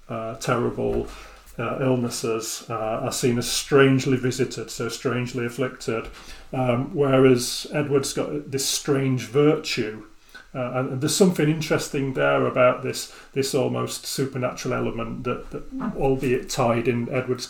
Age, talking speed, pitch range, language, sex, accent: 30-49, 130 wpm, 125-150 Hz, English, male, British